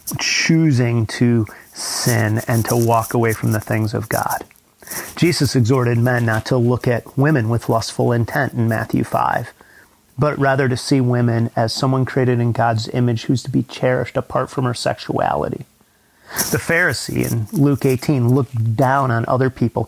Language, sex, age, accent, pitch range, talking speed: English, male, 30-49, American, 115-130 Hz, 165 wpm